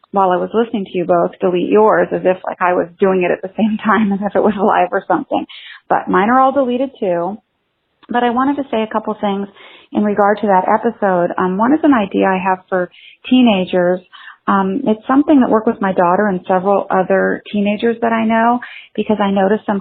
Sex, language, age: female, English, 30-49